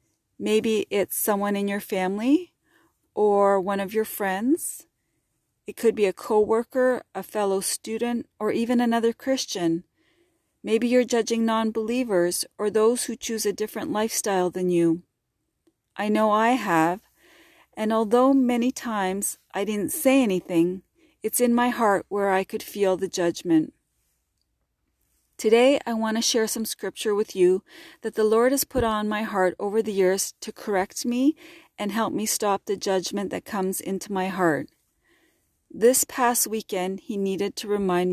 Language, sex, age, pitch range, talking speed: English, female, 40-59, 195-245 Hz, 155 wpm